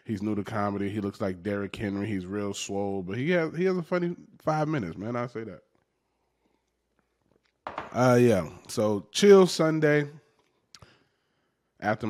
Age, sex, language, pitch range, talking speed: 20-39, male, English, 95-115 Hz, 155 wpm